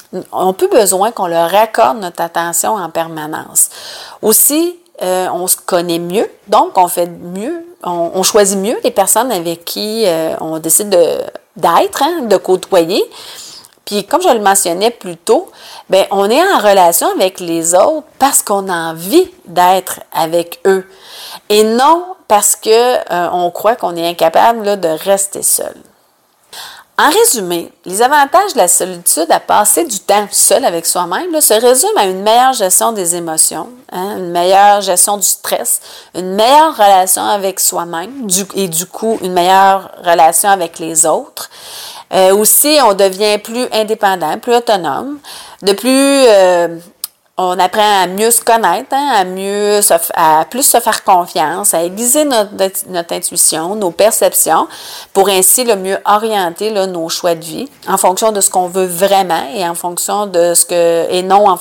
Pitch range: 175-220 Hz